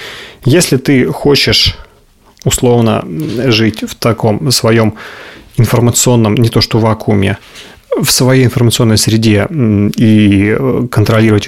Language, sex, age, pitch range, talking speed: Russian, male, 30-49, 110-135 Hz, 100 wpm